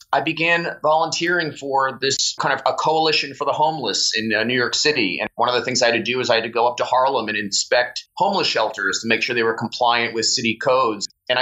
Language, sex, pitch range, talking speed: English, male, 115-155 Hz, 250 wpm